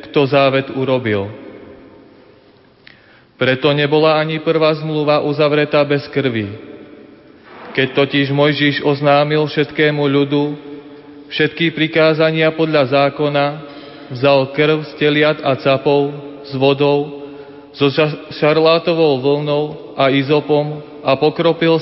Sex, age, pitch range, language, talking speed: male, 30-49, 140-155 Hz, Slovak, 95 wpm